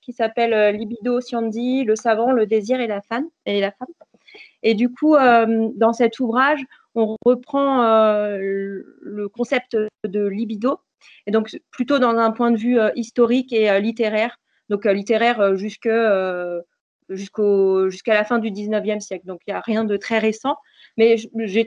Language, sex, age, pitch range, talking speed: French, female, 30-49, 210-240 Hz, 155 wpm